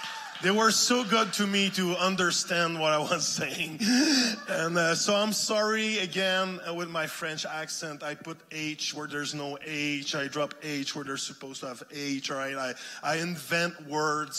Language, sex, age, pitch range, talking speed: English, male, 20-39, 145-185 Hz, 185 wpm